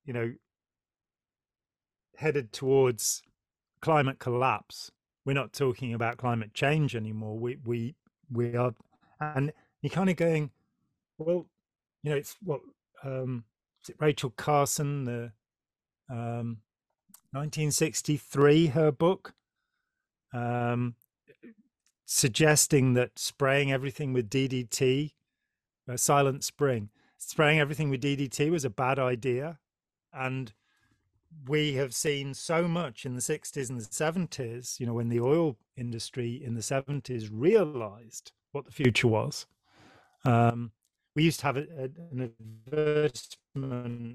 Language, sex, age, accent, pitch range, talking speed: English, male, 40-59, British, 120-150 Hz, 120 wpm